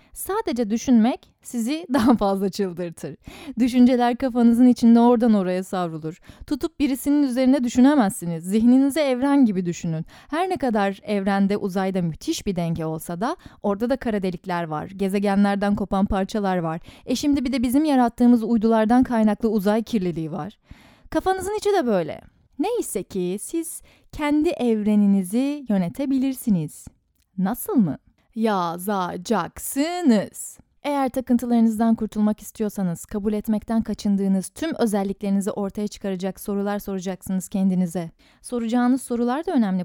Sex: female